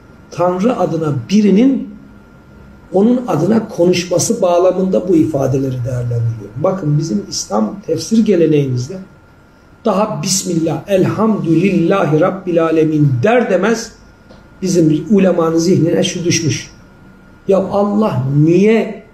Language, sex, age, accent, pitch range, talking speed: Turkish, male, 60-79, native, 160-210 Hz, 95 wpm